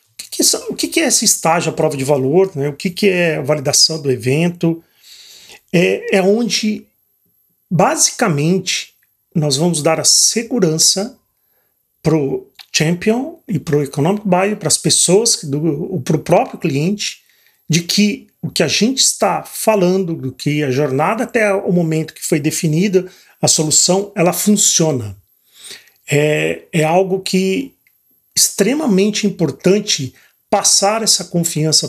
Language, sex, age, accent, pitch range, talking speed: Portuguese, male, 40-59, Brazilian, 155-200 Hz, 135 wpm